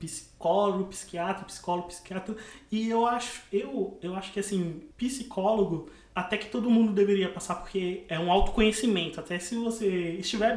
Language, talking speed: Portuguese, 155 wpm